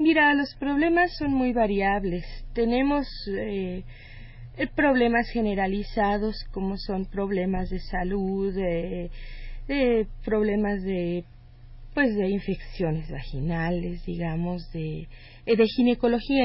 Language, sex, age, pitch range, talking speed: Spanish, female, 40-59, 185-235 Hz, 105 wpm